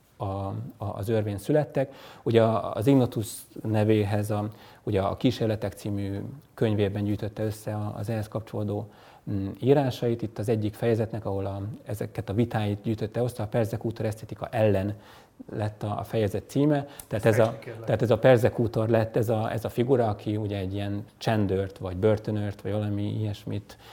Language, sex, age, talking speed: Hungarian, male, 30-49, 155 wpm